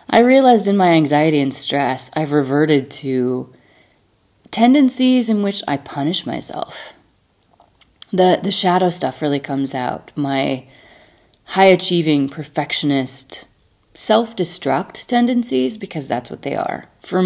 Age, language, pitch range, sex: 30-49, English, 135-185 Hz, female